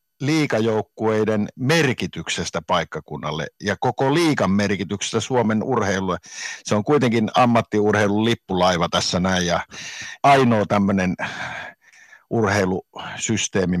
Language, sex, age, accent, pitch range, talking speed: Finnish, male, 60-79, native, 95-125 Hz, 85 wpm